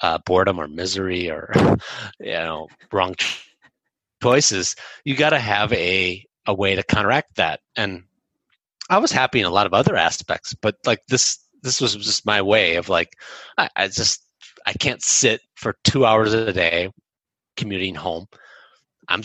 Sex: male